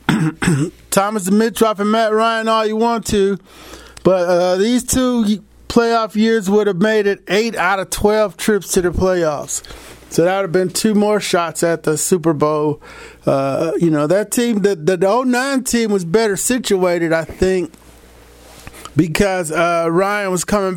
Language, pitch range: English, 165-215 Hz